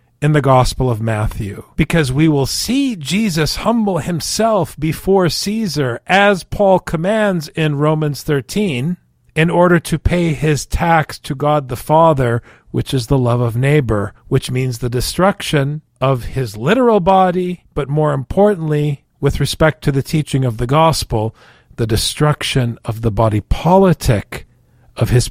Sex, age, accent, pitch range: male, 50-69, American, 125-185 Hz